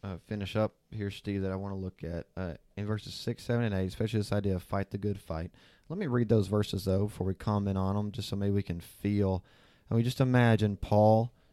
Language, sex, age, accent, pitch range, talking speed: English, male, 30-49, American, 95-115 Hz, 250 wpm